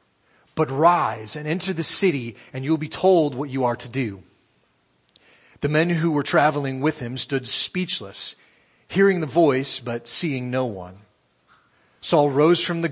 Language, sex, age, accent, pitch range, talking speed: English, male, 30-49, American, 120-155 Hz, 165 wpm